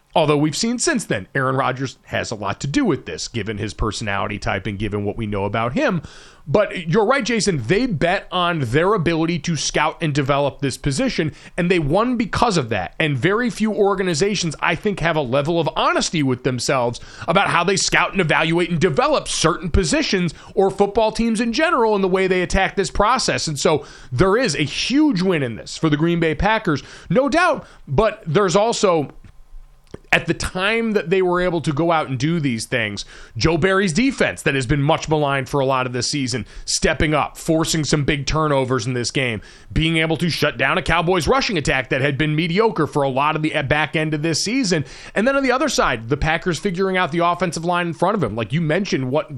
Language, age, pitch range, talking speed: English, 30-49, 140-190 Hz, 220 wpm